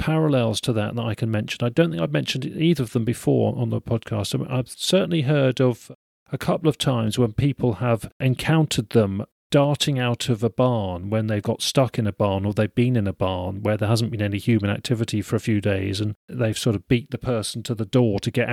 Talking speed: 235 wpm